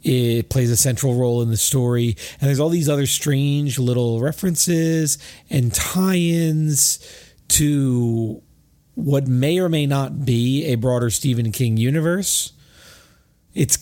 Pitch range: 110-135 Hz